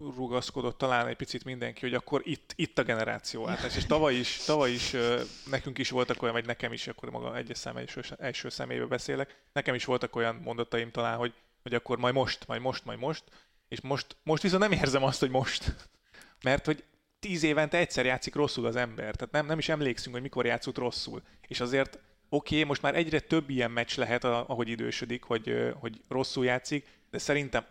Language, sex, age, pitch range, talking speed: Hungarian, male, 30-49, 120-140 Hz, 200 wpm